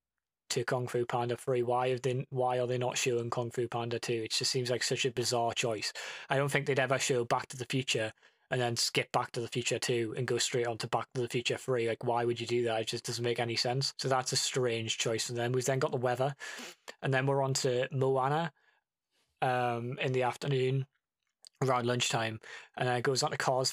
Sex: male